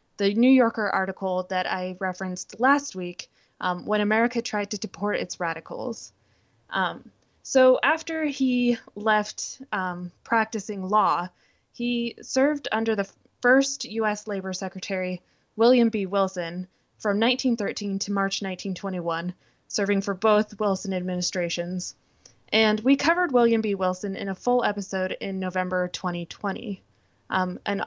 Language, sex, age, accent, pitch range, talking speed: English, female, 20-39, American, 185-230 Hz, 130 wpm